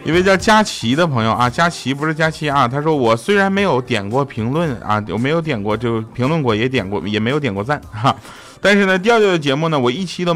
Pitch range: 105-155 Hz